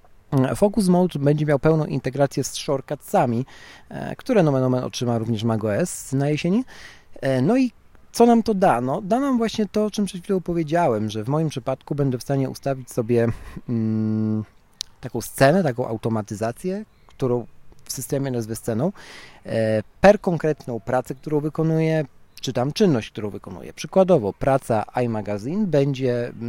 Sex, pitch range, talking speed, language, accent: male, 115-155 Hz, 150 wpm, Polish, native